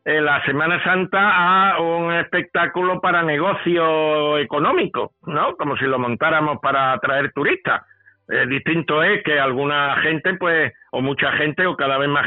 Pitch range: 145-195 Hz